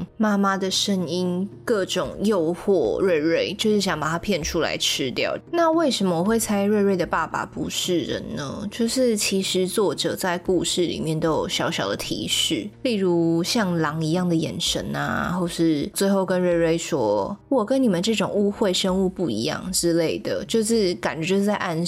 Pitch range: 165-200 Hz